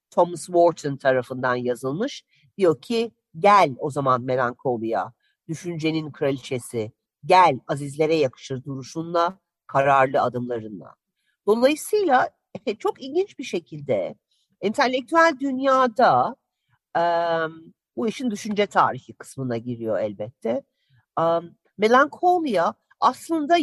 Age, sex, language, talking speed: 50-69, female, Turkish, 85 wpm